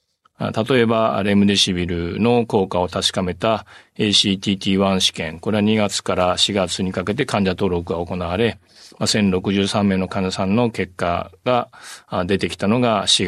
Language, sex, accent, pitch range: Japanese, male, native, 90-110 Hz